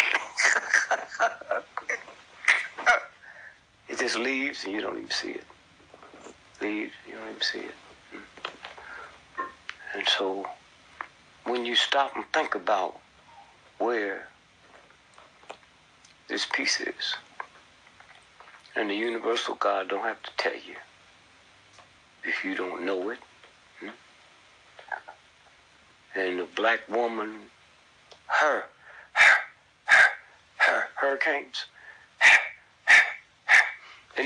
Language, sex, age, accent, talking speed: English, male, 60-79, American, 80 wpm